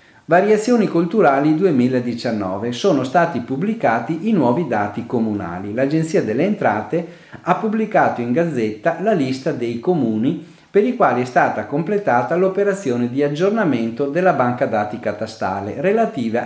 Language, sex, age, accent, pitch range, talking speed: Italian, male, 40-59, native, 110-170 Hz, 130 wpm